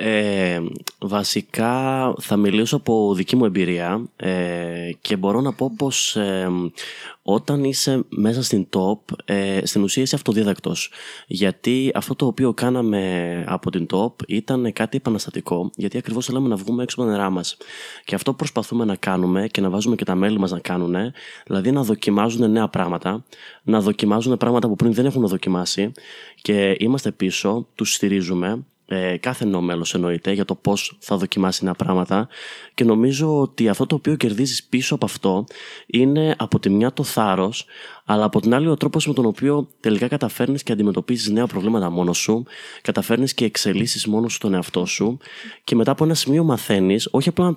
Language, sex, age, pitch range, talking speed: Greek, male, 20-39, 95-125 Hz, 175 wpm